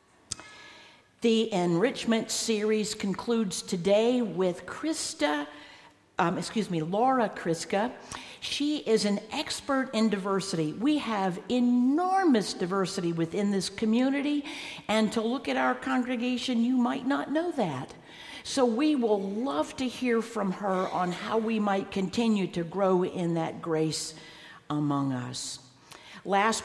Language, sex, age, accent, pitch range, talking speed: English, female, 50-69, American, 165-235 Hz, 130 wpm